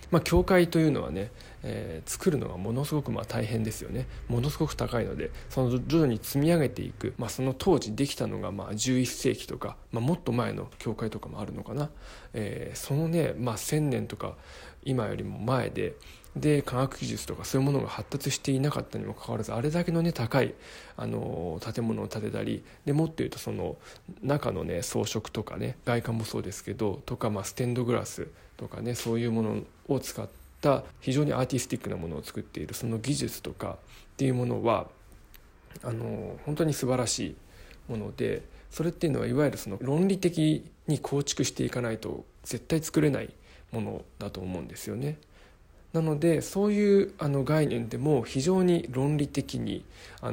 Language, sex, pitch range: Japanese, male, 110-145 Hz